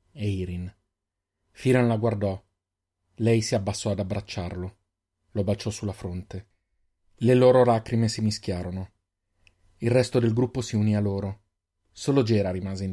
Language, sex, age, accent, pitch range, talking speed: Italian, male, 30-49, native, 95-125 Hz, 145 wpm